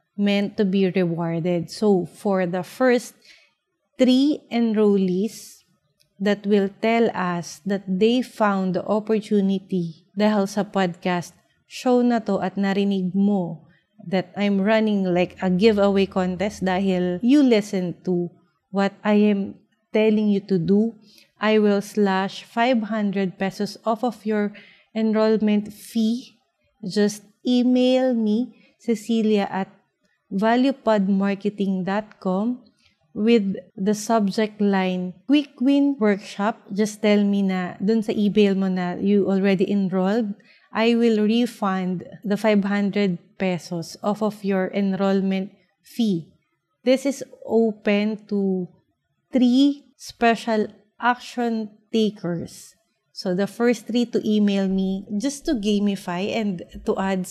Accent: Filipino